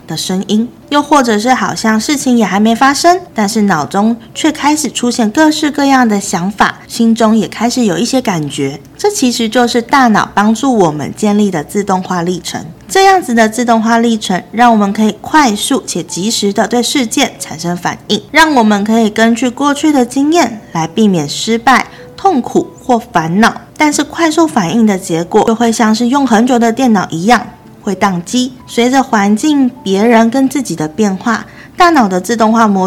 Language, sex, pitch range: Chinese, female, 205-260 Hz